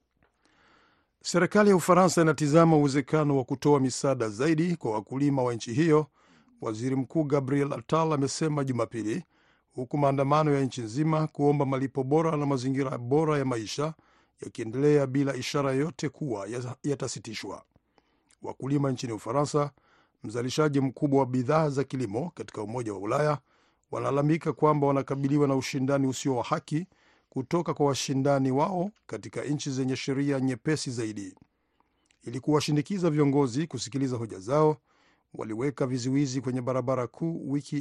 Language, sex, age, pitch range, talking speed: Swahili, male, 50-69, 130-150 Hz, 130 wpm